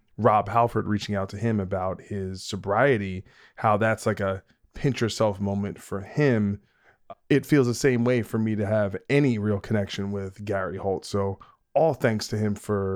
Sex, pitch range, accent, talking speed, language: male, 100-125 Hz, American, 180 wpm, English